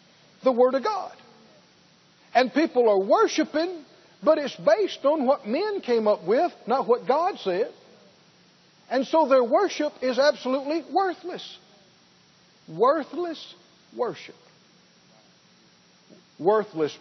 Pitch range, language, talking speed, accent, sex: 210-300 Hz, English, 110 wpm, American, male